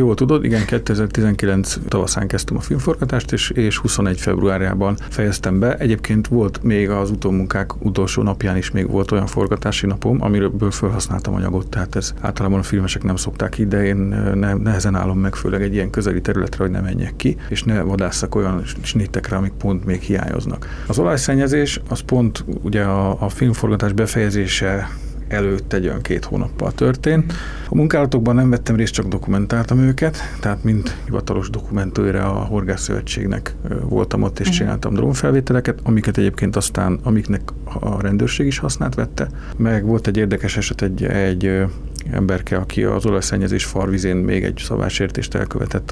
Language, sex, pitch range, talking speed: Hungarian, male, 95-110 Hz, 160 wpm